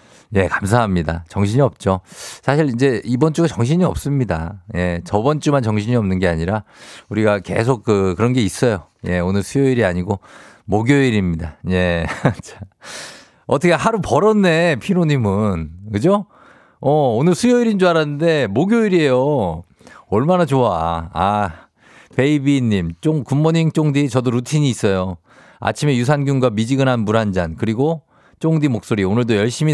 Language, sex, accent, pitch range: Korean, male, native, 100-135 Hz